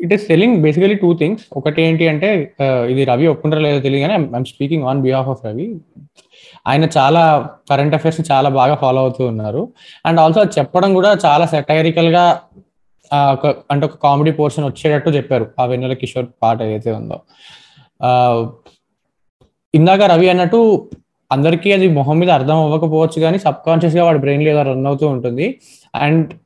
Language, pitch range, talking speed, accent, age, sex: Telugu, 140-165 Hz, 155 wpm, native, 20-39, male